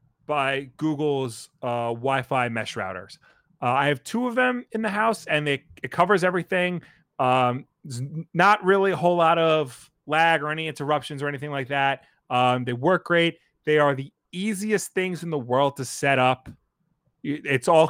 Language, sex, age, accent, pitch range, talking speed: English, male, 30-49, American, 130-165 Hz, 175 wpm